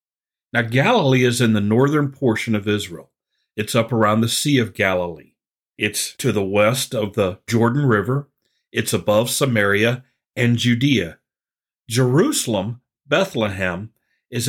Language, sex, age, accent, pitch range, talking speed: English, male, 50-69, American, 110-135 Hz, 135 wpm